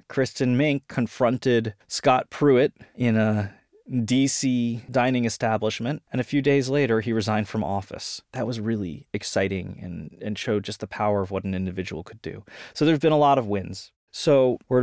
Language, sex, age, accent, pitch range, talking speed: English, male, 20-39, American, 105-130 Hz, 180 wpm